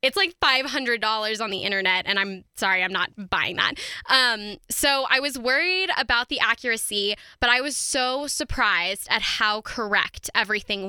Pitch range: 210-255 Hz